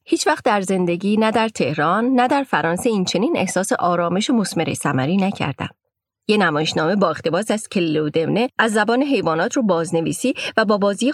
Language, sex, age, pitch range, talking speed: Persian, female, 30-49, 175-235 Hz, 165 wpm